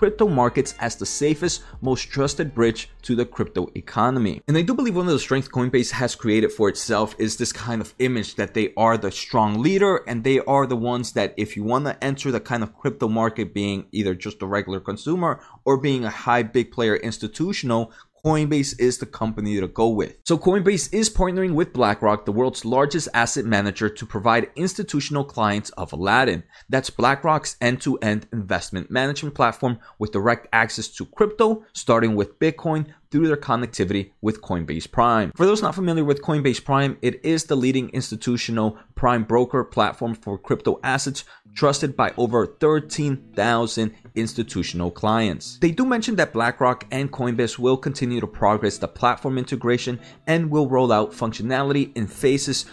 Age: 20-39